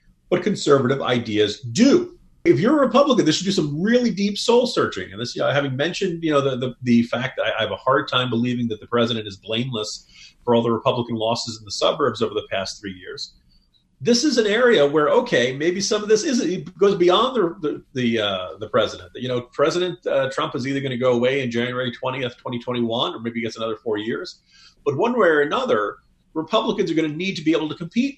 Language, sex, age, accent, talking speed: English, male, 40-59, American, 235 wpm